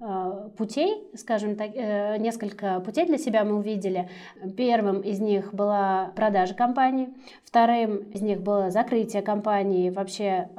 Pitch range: 195-230 Hz